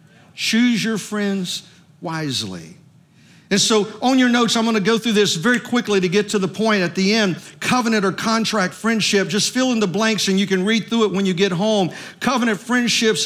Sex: male